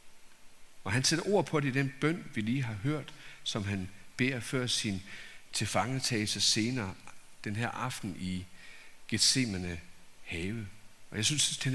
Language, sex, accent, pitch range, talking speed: Danish, male, native, 100-130 Hz, 160 wpm